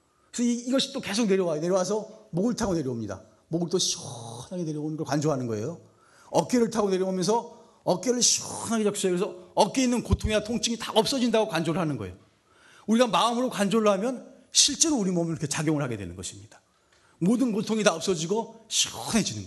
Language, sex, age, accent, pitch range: Korean, male, 30-49, native, 150-230 Hz